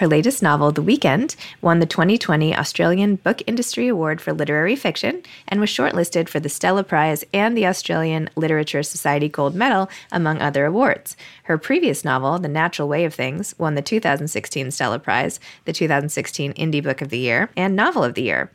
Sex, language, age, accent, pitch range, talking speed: female, English, 20-39, American, 150-195 Hz, 185 wpm